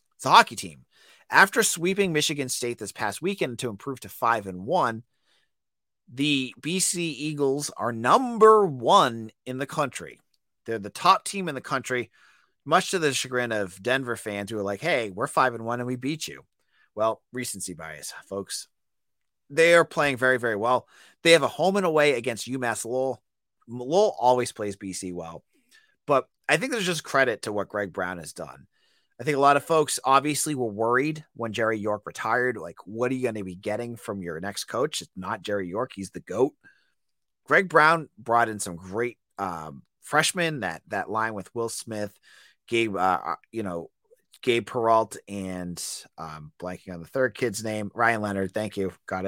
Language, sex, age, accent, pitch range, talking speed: English, male, 30-49, American, 105-145 Hz, 185 wpm